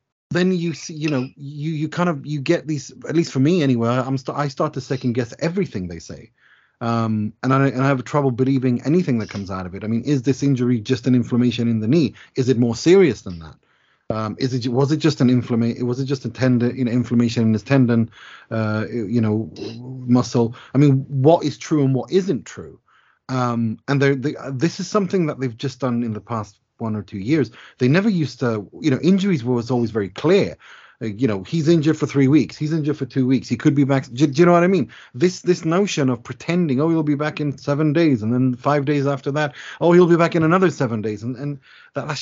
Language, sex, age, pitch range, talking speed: English, male, 30-49, 120-155 Hz, 245 wpm